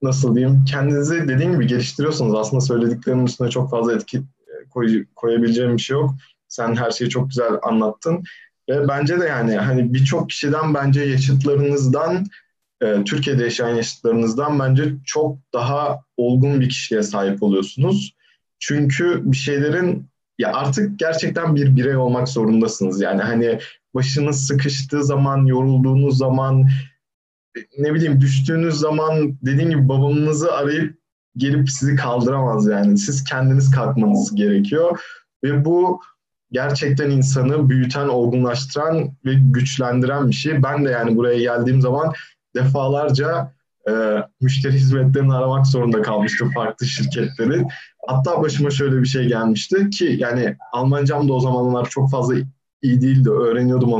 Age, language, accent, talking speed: 20-39, Turkish, native, 130 wpm